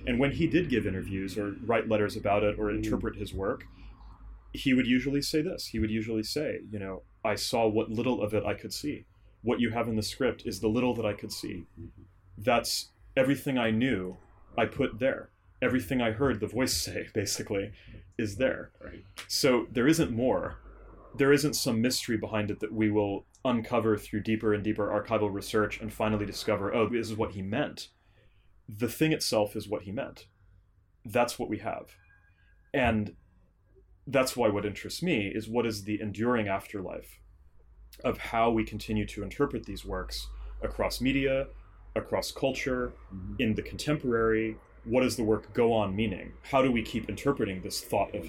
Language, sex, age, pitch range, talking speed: English, male, 30-49, 95-120 Hz, 180 wpm